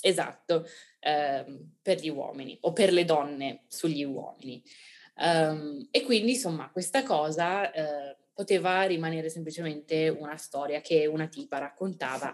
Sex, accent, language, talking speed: female, native, Italian, 115 wpm